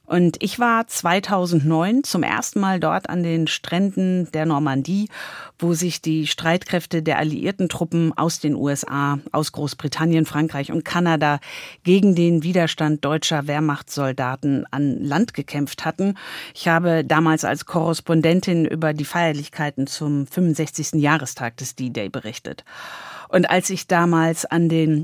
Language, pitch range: German, 150-185 Hz